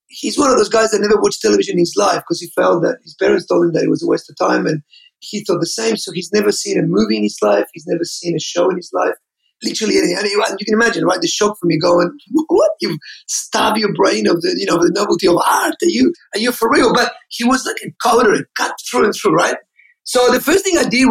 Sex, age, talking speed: male, 30-49, 280 wpm